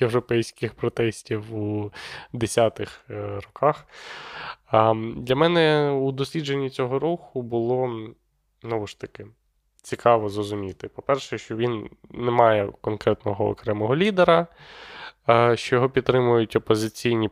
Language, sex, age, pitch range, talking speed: Ukrainian, male, 20-39, 105-130 Hz, 100 wpm